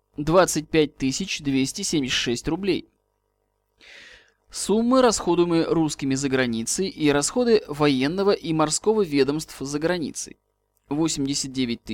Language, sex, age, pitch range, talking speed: Russian, male, 20-39, 135-200 Hz, 85 wpm